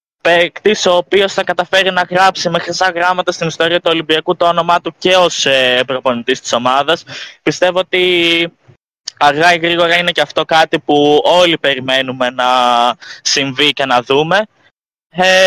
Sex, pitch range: male, 160-195 Hz